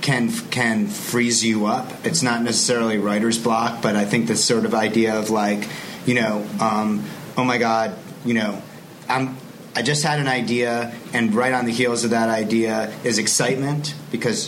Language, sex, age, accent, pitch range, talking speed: English, male, 30-49, American, 110-125 Hz, 180 wpm